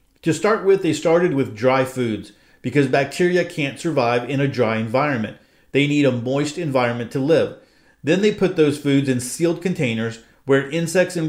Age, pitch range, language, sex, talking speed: 40-59, 125-160 Hz, English, male, 180 wpm